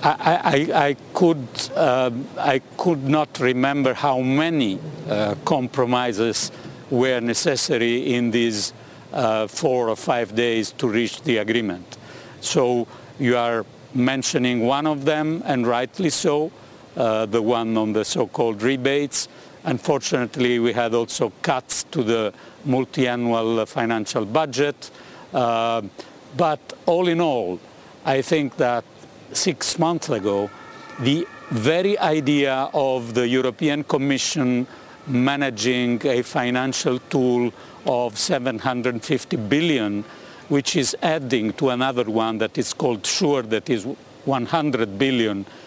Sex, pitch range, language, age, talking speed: male, 115-140 Hz, English, 60-79, 120 wpm